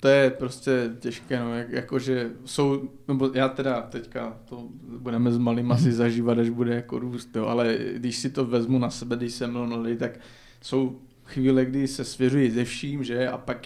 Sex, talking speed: male, 200 wpm